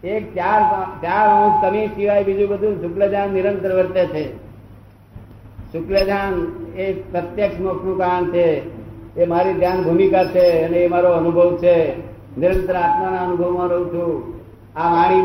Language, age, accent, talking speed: Gujarati, 60-79, native, 115 wpm